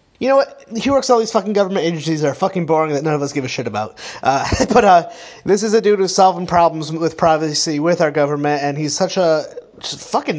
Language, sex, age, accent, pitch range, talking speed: English, male, 30-49, American, 140-175 Hz, 245 wpm